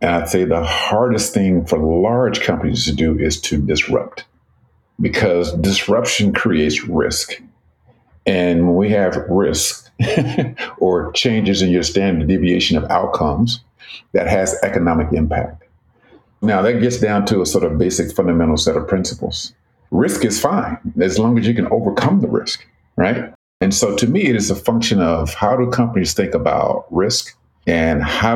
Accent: American